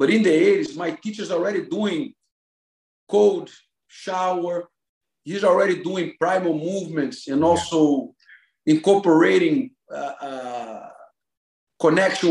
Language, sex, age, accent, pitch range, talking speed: English, male, 50-69, Brazilian, 150-215 Hz, 105 wpm